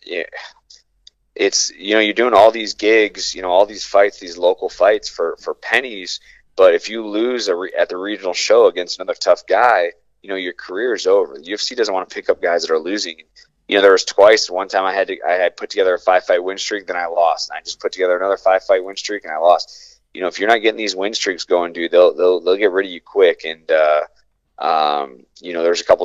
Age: 20-39